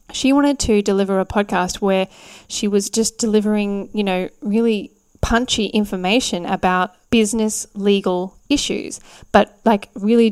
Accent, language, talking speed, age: Australian, English, 135 wpm, 10-29